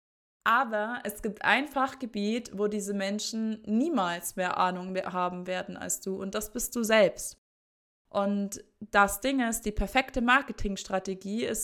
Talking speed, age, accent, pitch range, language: 150 wpm, 20-39, German, 205-255 Hz, German